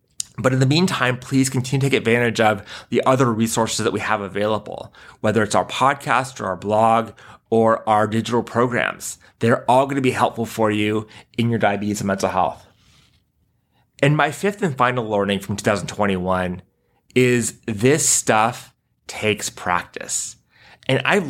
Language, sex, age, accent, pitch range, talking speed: English, male, 30-49, American, 105-130 Hz, 160 wpm